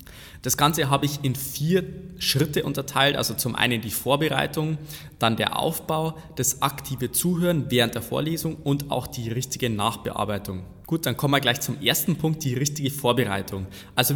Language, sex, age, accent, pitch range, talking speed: German, male, 20-39, German, 125-145 Hz, 165 wpm